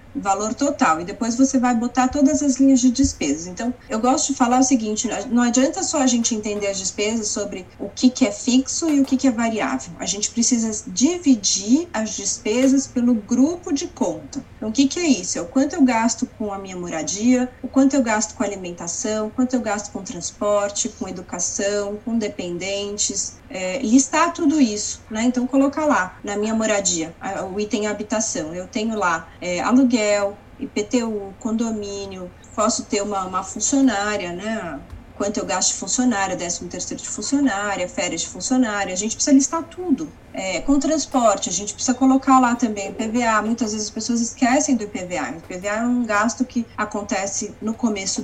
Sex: female